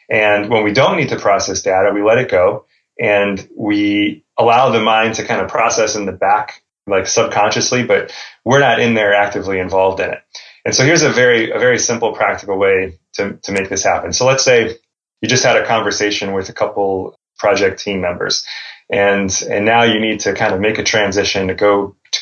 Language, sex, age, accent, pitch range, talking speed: English, male, 30-49, American, 100-115 Hz, 210 wpm